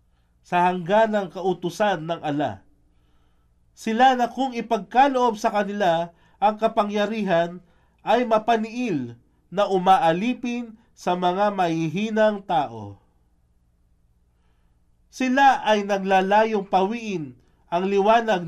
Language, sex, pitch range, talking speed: Filipino, male, 145-205 Hz, 90 wpm